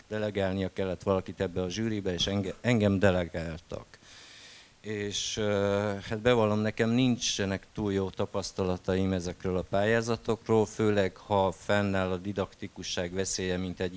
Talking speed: 120 wpm